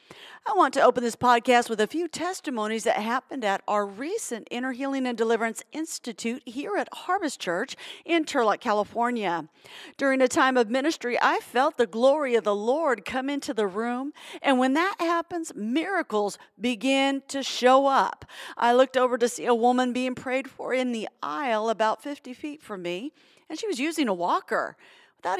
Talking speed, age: 180 wpm, 40-59